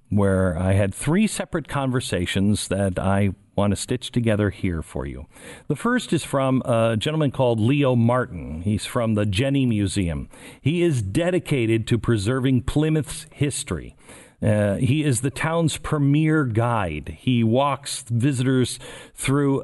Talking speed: 145 wpm